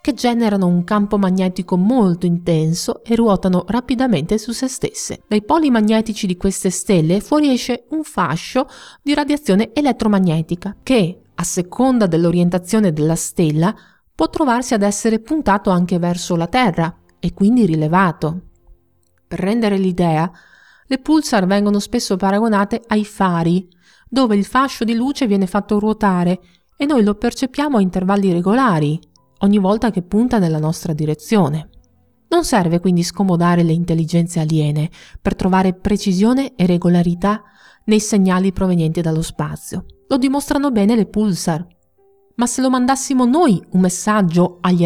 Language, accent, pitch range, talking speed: Italian, native, 175-235 Hz, 140 wpm